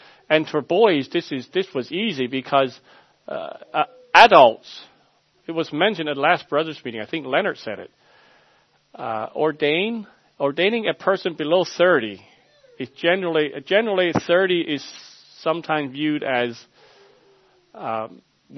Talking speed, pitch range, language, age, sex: 130 wpm, 130-180 Hz, English, 40-59, male